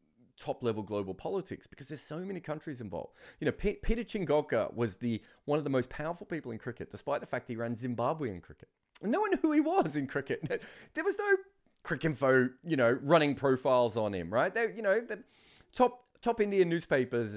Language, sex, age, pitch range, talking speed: English, male, 30-49, 120-175 Hz, 205 wpm